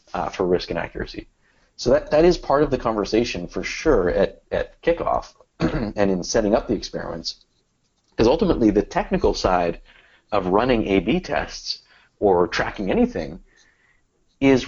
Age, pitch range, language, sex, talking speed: 30-49, 95-115 Hz, English, male, 150 wpm